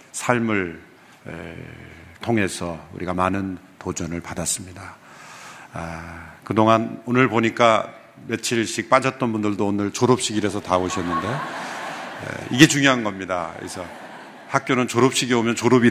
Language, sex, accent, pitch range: Korean, male, native, 85-115 Hz